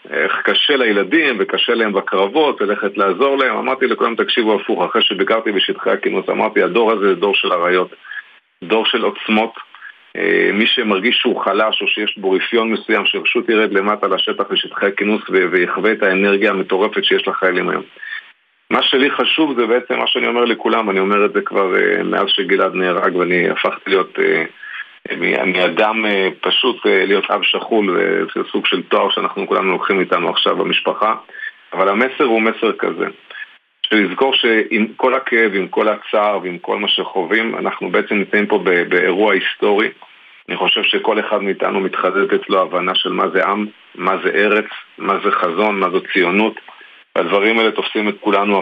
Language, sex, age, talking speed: Hebrew, male, 50-69, 165 wpm